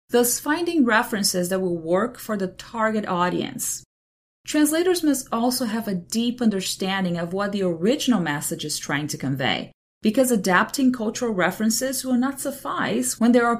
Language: English